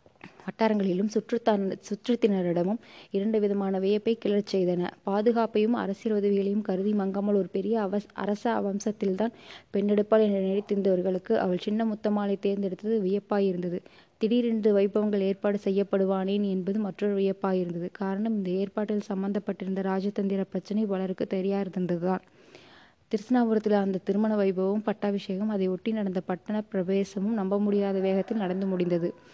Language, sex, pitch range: Tamil, female, 190-210 Hz